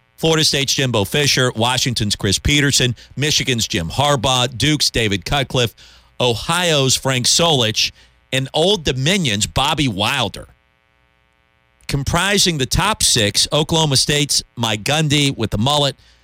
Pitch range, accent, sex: 105-140 Hz, American, male